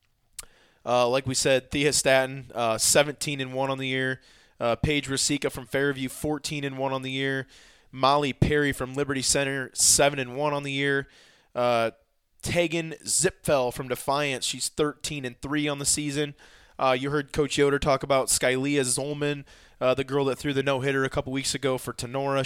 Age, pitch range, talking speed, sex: 20-39, 120-140 Hz, 185 wpm, male